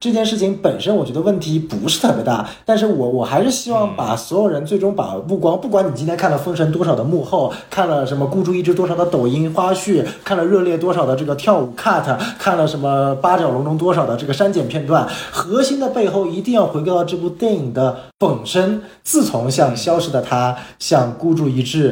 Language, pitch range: Chinese, 135-205 Hz